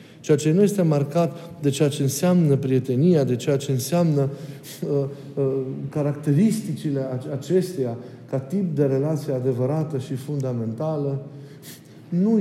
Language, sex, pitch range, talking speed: Romanian, male, 135-160 Hz, 125 wpm